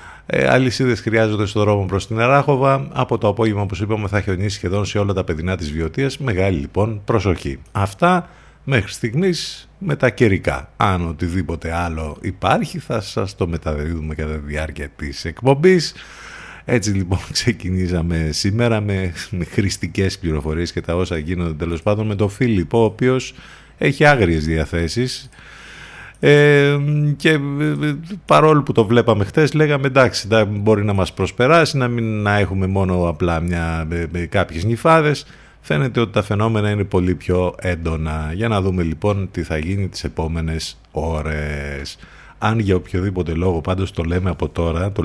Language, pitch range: Greek, 85-120 Hz